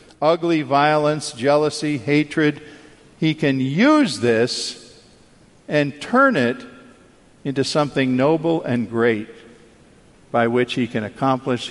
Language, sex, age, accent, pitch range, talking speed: English, male, 50-69, American, 115-145 Hz, 110 wpm